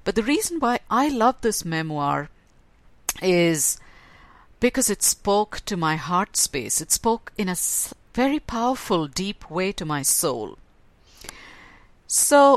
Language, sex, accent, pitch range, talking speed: English, female, Indian, 160-215 Hz, 135 wpm